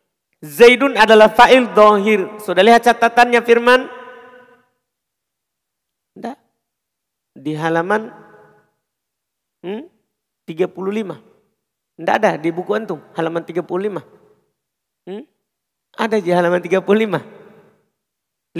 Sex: male